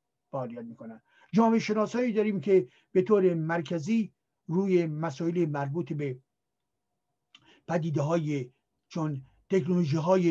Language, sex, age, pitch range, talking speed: Persian, male, 60-79, 165-225 Hz, 95 wpm